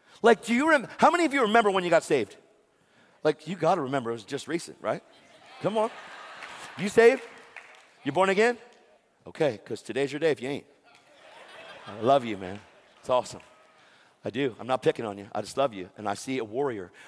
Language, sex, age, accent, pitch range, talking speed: English, male, 50-69, American, 135-175 Hz, 205 wpm